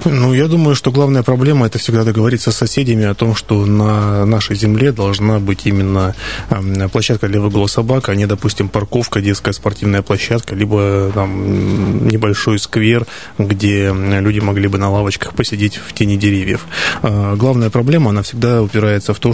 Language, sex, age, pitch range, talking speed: Russian, male, 20-39, 100-115 Hz, 160 wpm